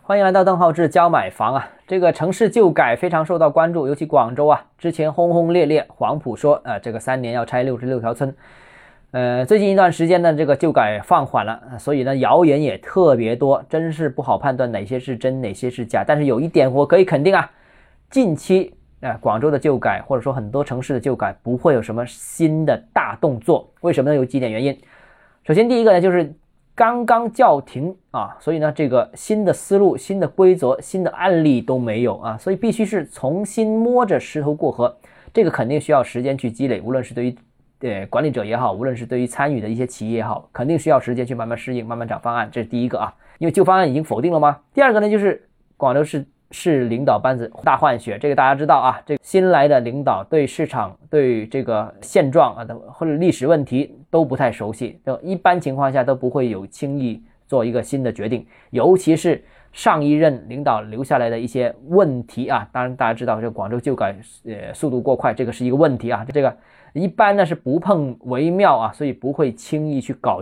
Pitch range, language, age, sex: 125-165 Hz, Chinese, 20-39, male